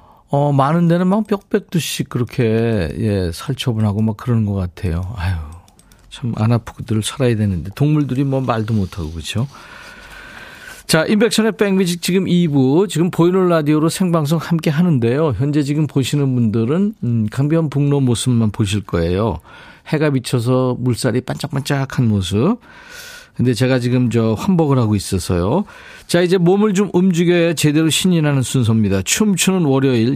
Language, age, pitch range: Korean, 40-59, 115-175 Hz